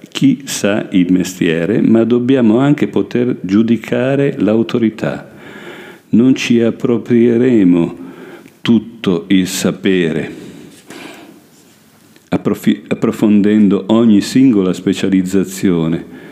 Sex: male